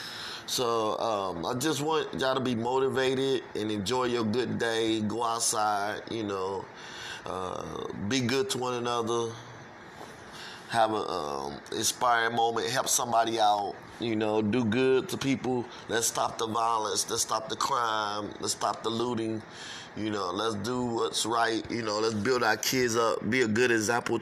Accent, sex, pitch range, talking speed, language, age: American, male, 110-125 Hz, 165 wpm, English, 20-39